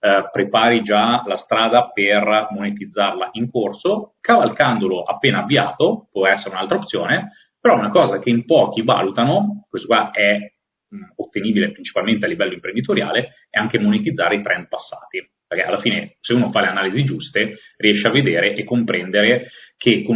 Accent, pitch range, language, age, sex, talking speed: native, 105-130 Hz, Italian, 30-49, male, 155 wpm